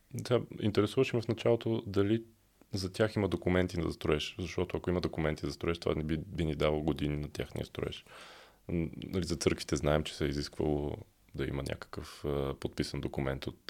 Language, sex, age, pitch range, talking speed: Bulgarian, male, 20-39, 80-100 Hz, 195 wpm